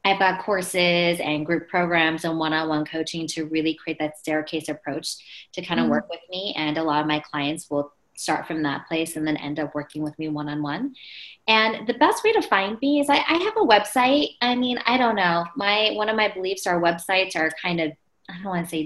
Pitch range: 160-210 Hz